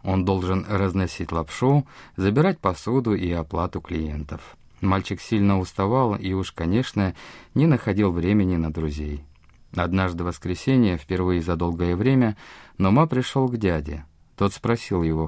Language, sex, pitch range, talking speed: Russian, male, 85-130 Hz, 135 wpm